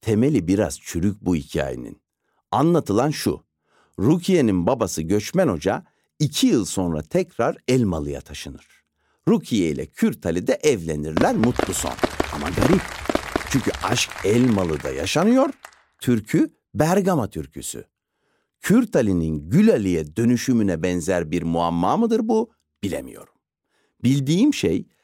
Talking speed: 105 wpm